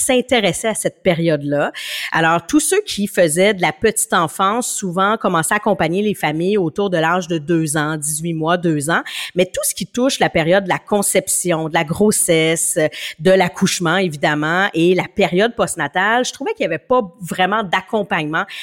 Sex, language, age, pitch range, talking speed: female, French, 30-49, 165-210 Hz, 185 wpm